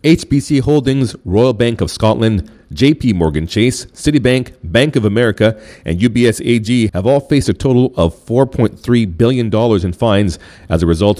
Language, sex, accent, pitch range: English, male, American, 95-125 Hz